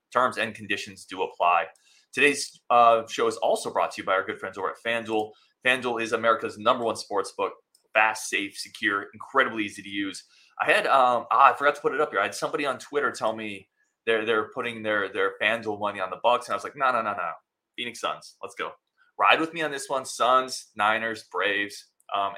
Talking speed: 225 wpm